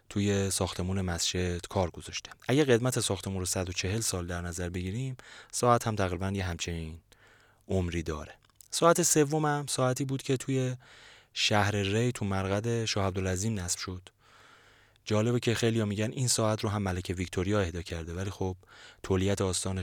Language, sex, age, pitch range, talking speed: Persian, male, 30-49, 90-110 Hz, 160 wpm